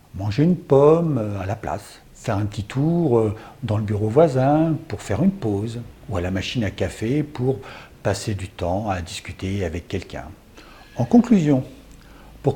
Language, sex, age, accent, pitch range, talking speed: French, male, 60-79, French, 110-160 Hz, 165 wpm